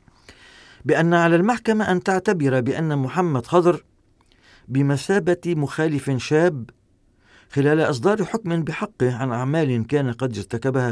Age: 50-69